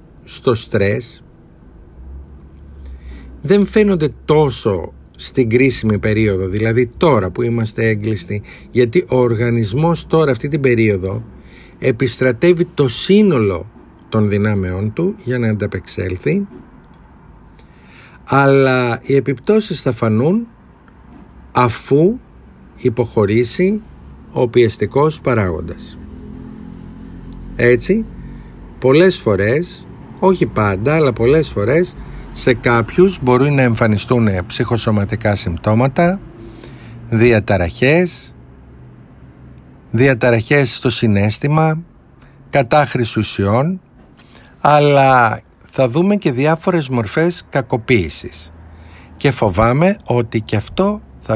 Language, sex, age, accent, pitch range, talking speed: Greek, male, 50-69, native, 105-145 Hz, 85 wpm